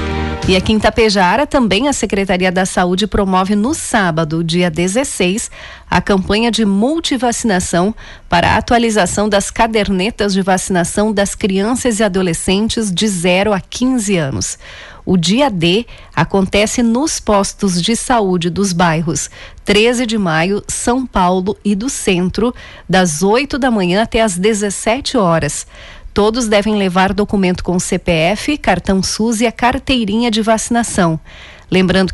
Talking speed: 140 wpm